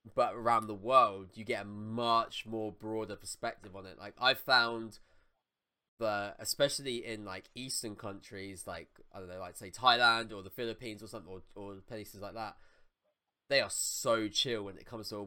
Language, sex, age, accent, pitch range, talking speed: English, male, 20-39, British, 105-140 Hz, 190 wpm